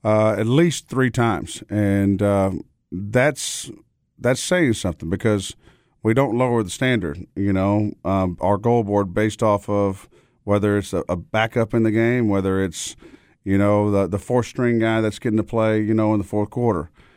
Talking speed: 185 wpm